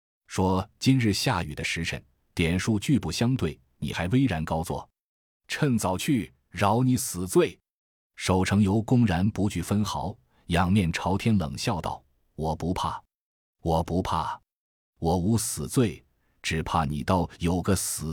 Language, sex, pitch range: Chinese, male, 80-110 Hz